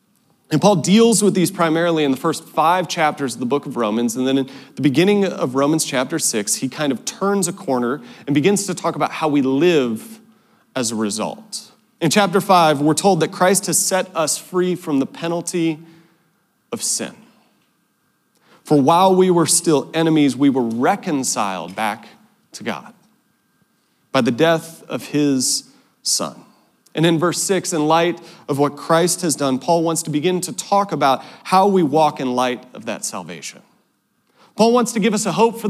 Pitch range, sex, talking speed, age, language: 150-205 Hz, male, 185 wpm, 30-49, English